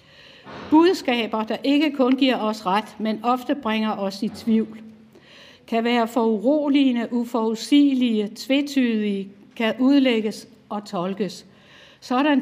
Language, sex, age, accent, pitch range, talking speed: Danish, female, 60-79, native, 205-250 Hz, 110 wpm